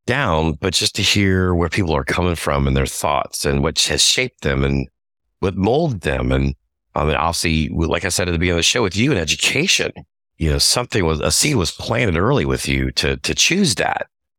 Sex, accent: male, American